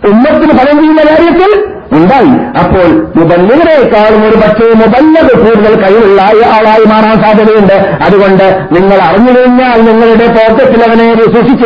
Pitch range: 180-230 Hz